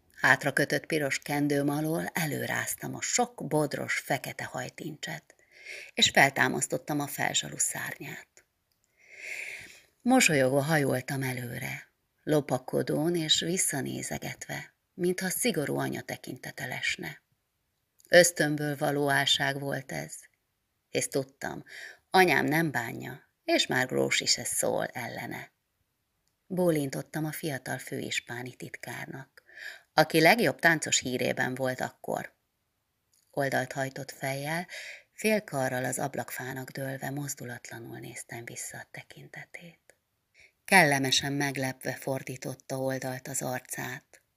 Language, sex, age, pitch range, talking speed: Hungarian, female, 30-49, 130-165 Hz, 95 wpm